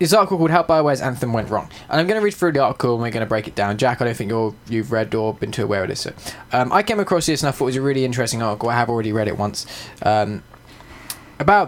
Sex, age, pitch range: male, 10-29, 115-175 Hz